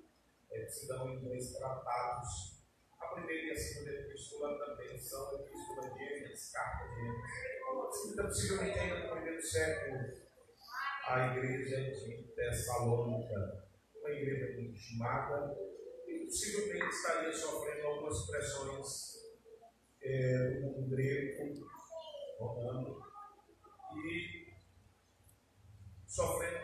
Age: 40-59